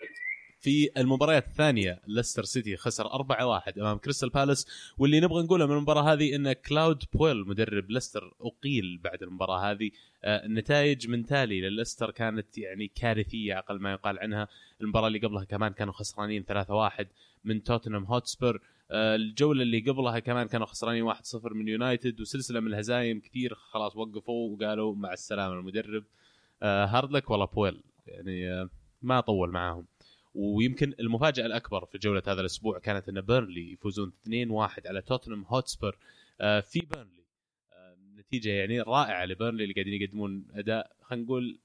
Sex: male